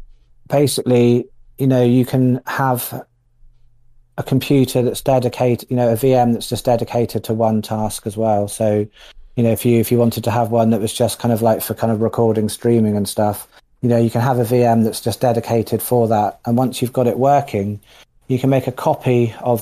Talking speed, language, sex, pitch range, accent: 215 wpm, English, male, 115-130 Hz, British